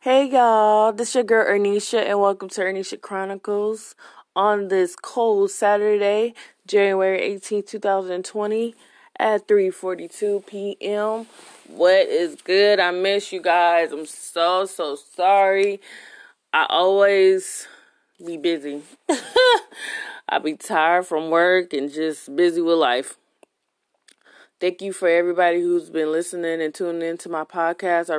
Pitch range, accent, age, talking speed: 175-235 Hz, American, 20-39, 130 wpm